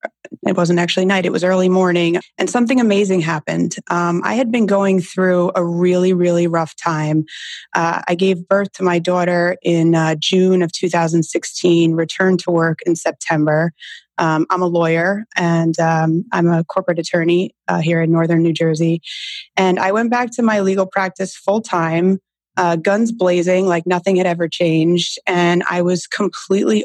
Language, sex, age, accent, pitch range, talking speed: English, female, 20-39, American, 165-185 Hz, 170 wpm